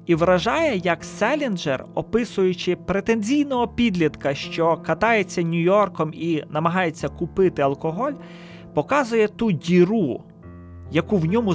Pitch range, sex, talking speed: 155-215 Hz, male, 105 wpm